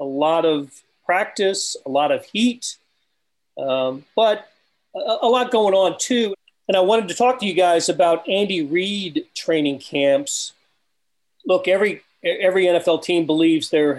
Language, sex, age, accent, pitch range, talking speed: English, male, 40-59, American, 155-210 Hz, 155 wpm